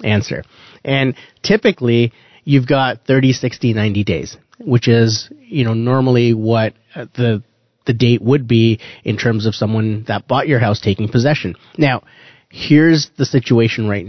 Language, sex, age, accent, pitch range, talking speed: English, male, 30-49, American, 115-145 Hz, 150 wpm